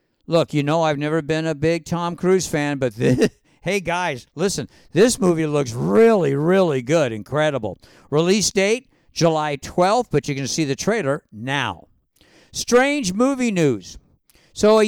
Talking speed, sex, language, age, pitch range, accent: 155 wpm, male, English, 50-69, 150-200 Hz, American